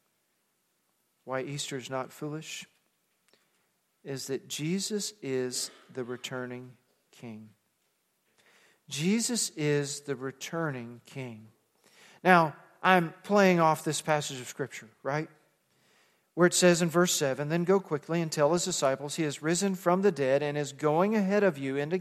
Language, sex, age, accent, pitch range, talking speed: English, male, 40-59, American, 145-190 Hz, 140 wpm